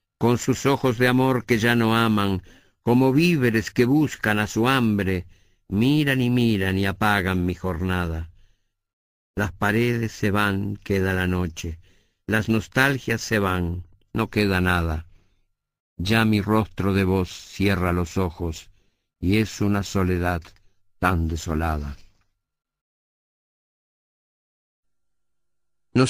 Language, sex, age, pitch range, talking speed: Spanish, male, 50-69, 95-120 Hz, 120 wpm